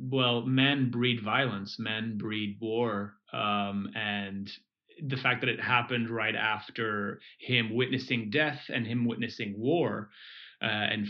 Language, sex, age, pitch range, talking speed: English, male, 30-49, 110-130 Hz, 135 wpm